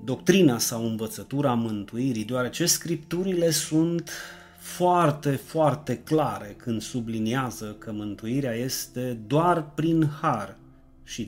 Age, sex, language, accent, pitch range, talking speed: 30-49, male, Romanian, native, 115-155 Hz, 100 wpm